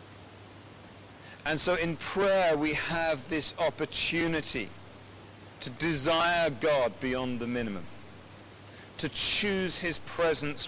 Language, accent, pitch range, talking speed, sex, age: English, British, 100-150 Hz, 100 wpm, male, 40-59